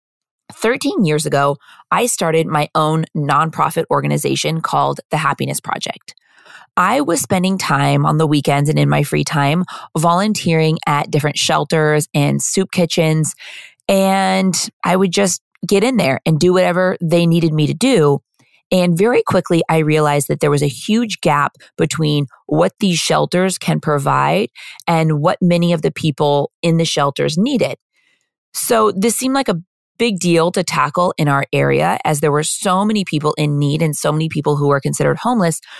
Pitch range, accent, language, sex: 145-185 Hz, American, English, female